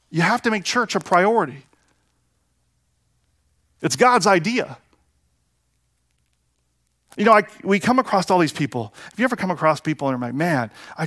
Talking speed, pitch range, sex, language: 155 wpm, 135-220 Hz, male, English